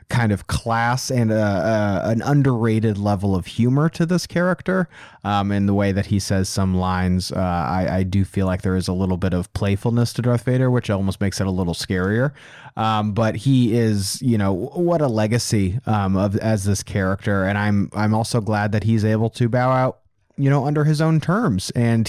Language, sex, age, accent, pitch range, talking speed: English, male, 30-49, American, 105-130 Hz, 210 wpm